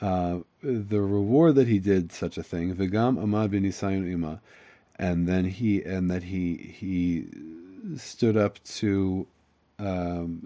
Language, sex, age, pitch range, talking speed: English, male, 40-59, 95-125 Hz, 125 wpm